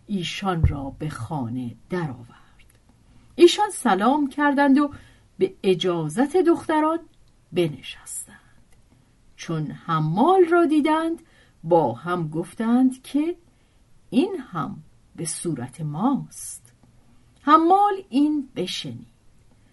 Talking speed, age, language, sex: 90 wpm, 50-69, Persian, female